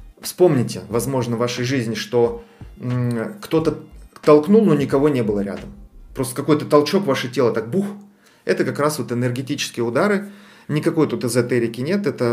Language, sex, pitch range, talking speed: Russian, male, 115-150 Hz, 155 wpm